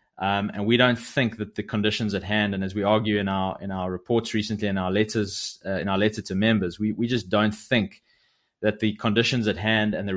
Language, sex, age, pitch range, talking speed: English, male, 20-39, 100-115 Hz, 240 wpm